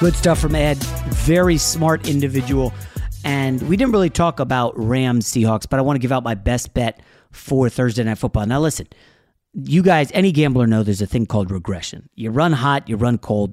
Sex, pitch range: male, 110-145 Hz